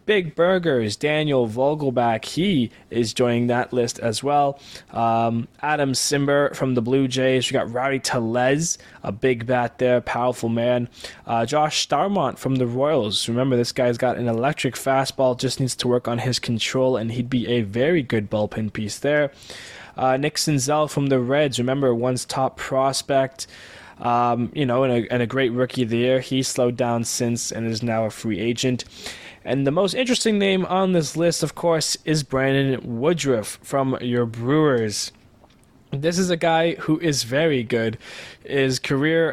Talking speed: 170 wpm